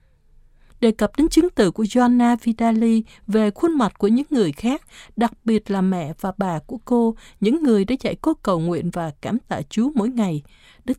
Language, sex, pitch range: Vietnamese, female, 195-265 Hz